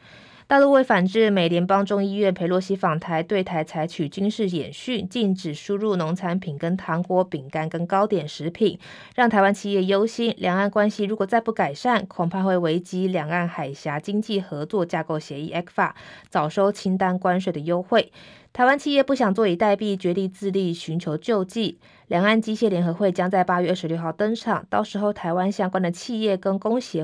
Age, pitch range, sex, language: 20-39, 165-205 Hz, female, Chinese